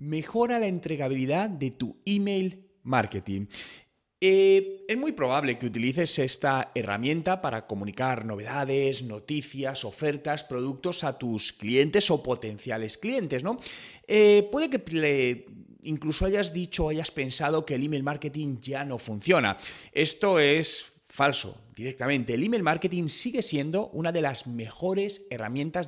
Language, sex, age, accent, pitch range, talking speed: Spanish, male, 30-49, Spanish, 125-175 Hz, 130 wpm